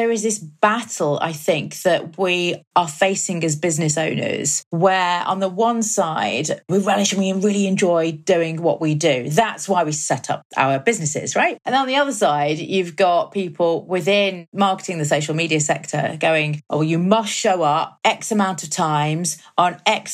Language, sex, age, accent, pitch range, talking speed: English, female, 30-49, British, 155-200 Hz, 185 wpm